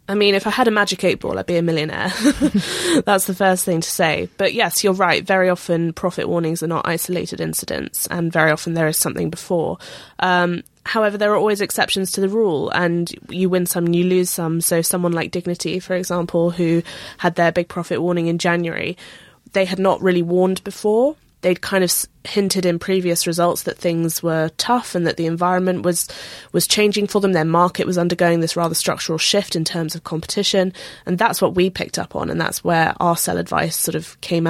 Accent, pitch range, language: British, 165-190 Hz, English